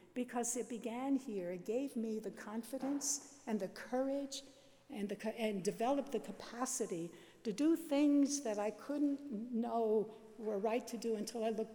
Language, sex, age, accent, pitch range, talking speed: English, female, 60-79, American, 200-265 Hz, 160 wpm